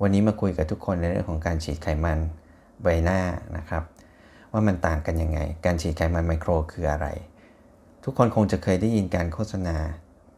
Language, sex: Thai, male